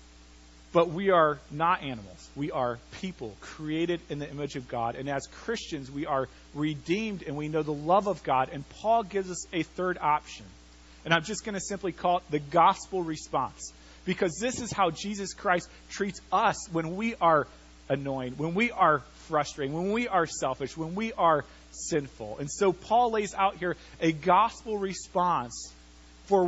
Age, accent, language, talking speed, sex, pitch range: 40-59, American, English, 175 wpm, male, 135-190 Hz